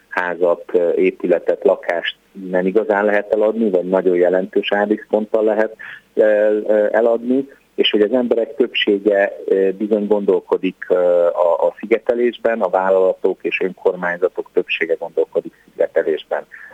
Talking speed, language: 110 wpm, Hungarian